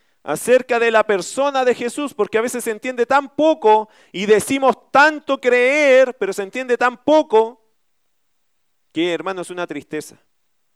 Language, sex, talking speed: Spanish, male, 150 wpm